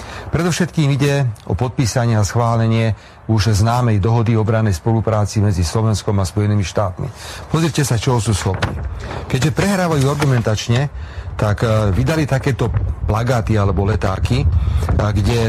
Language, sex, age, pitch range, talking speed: Slovak, male, 40-59, 100-125 Hz, 125 wpm